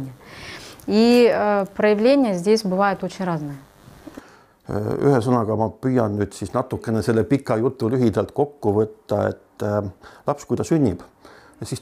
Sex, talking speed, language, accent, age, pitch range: male, 130 wpm, English, Finnish, 50-69, 105-125 Hz